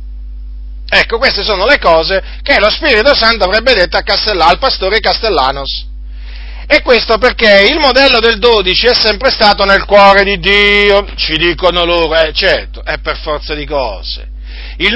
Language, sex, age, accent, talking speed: Italian, male, 40-59, native, 165 wpm